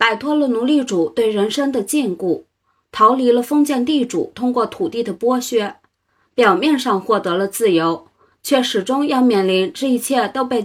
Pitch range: 195-265 Hz